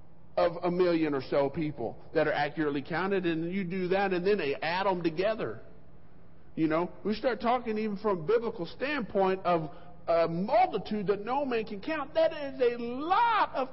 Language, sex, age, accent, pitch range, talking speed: English, male, 50-69, American, 150-225 Hz, 190 wpm